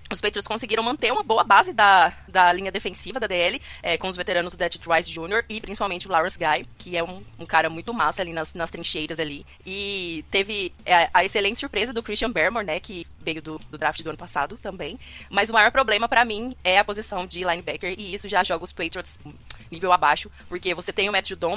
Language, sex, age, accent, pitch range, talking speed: Portuguese, female, 20-39, Brazilian, 175-220 Hz, 225 wpm